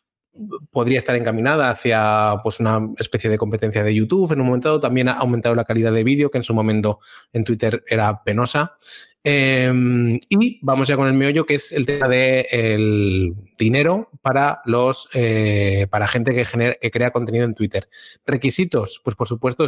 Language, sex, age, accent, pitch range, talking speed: English, male, 20-39, Spanish, 115-140 Hz, 185 wpm